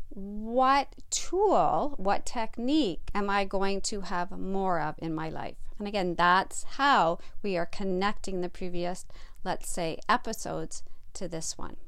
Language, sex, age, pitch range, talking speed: English, female, 50-69, 185-250 Hz, 145 wpm